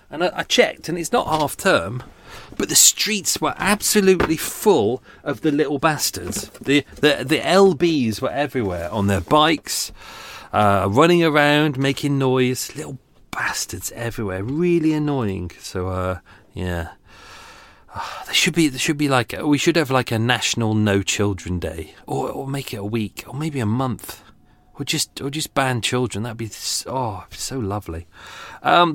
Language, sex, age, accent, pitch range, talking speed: English, male, 40-59, British, 100-150 Hz, 170 wpm